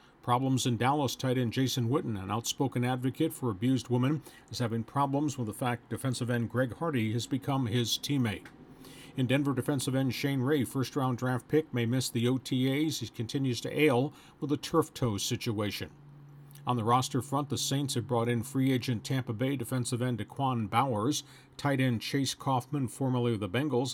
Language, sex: English, male